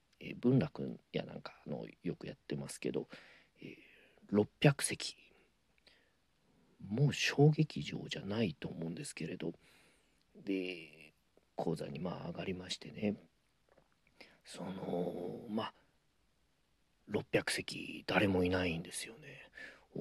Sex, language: male, Japanese